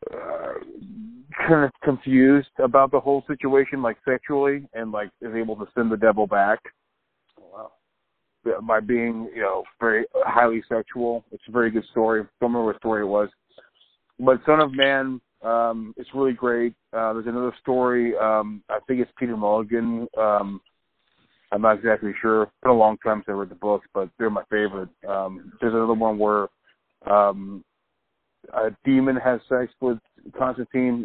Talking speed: 170 wpm